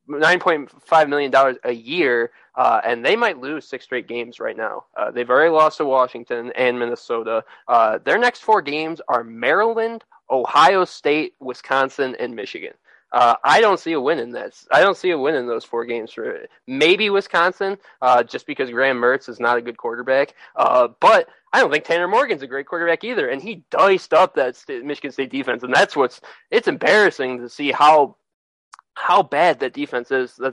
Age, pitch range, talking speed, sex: 20-39, 130-195 Hz, 200 wpm, male